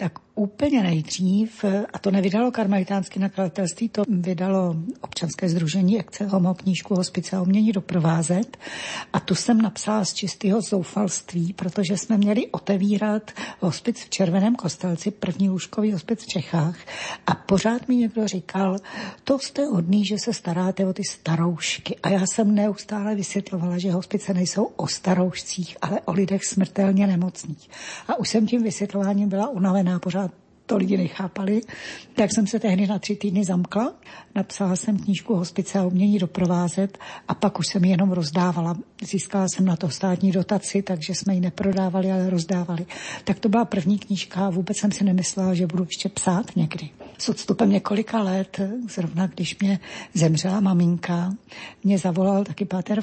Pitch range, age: 180-205 Hz, 60-79